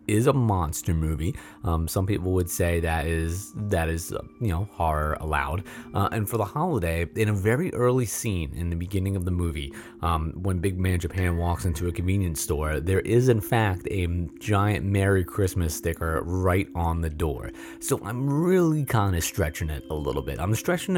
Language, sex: English, male